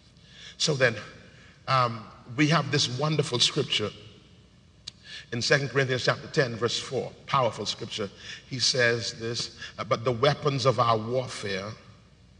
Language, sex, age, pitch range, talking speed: English, male, 50-69, 130-180 Hz, 125 wpm